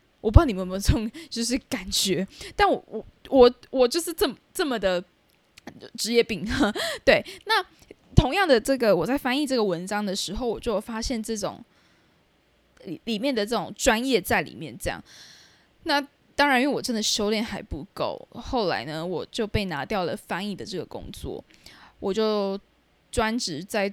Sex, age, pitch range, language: female, 10-29, 180-230 Hz, Chinese